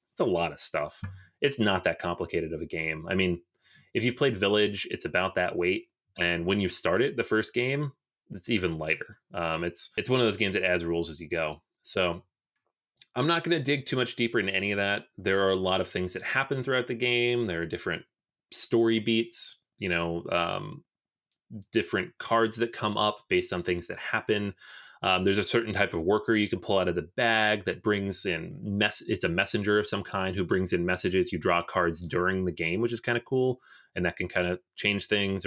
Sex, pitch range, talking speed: male, 90-115 Hz, 225 wpm